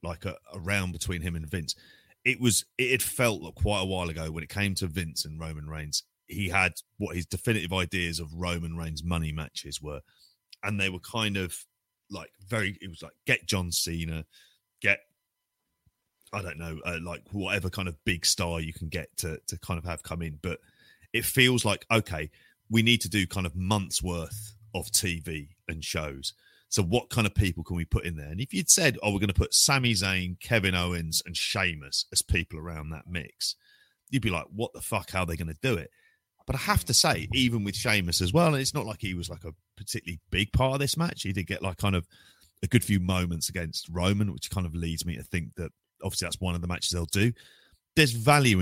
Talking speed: 230 wpm